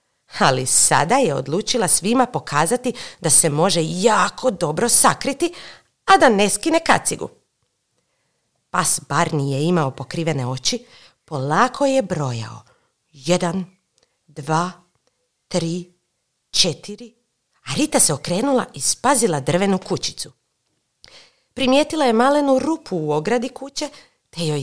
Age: 50-69